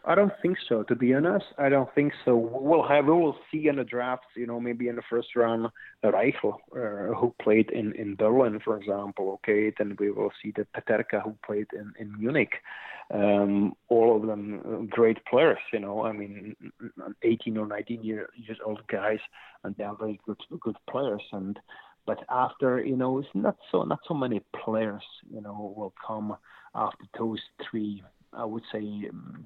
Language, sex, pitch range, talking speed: English, male, 105-120 Hz, 195 wpm